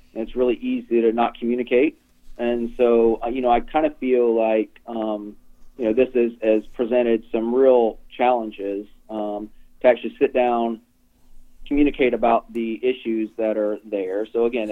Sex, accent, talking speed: male, American, 160 wpm